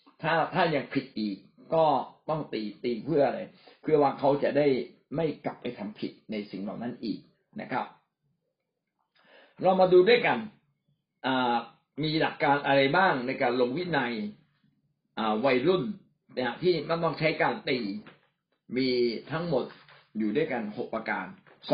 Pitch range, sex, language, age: 125-165 Hz, male, Thai, 60-79